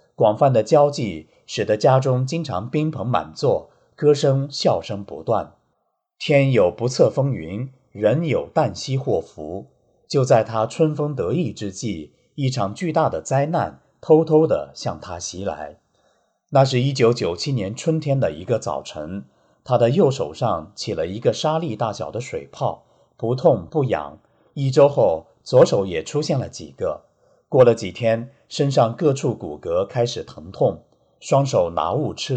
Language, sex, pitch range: Chinese, male, 115-150 Hz